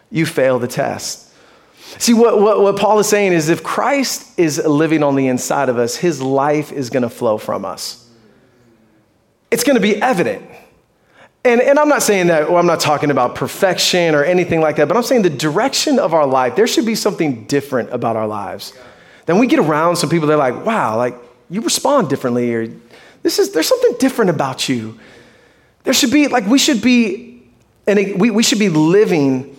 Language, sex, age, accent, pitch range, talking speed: English, male, 30-49, American, 130-180 Hz, 205 wpm